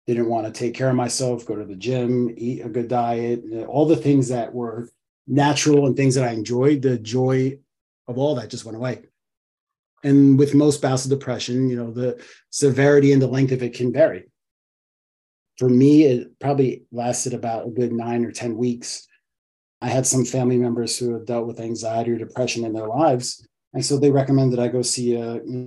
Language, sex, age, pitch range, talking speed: English, male, 30-49, 115-130 Hz, 205 wpm